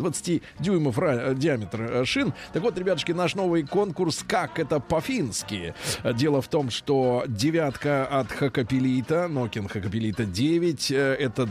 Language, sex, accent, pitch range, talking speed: Russian, male, native, 125-155 Hz, 125 wpm